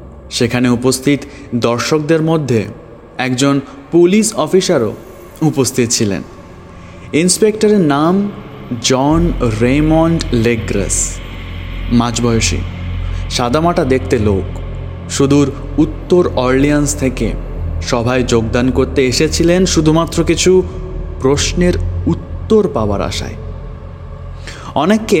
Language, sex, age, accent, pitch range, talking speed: Bengali, male, 30-49, native, 100-155 Hz, 80 wpm